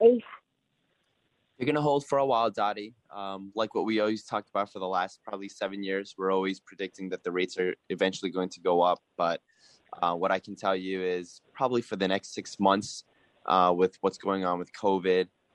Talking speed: 205 wpm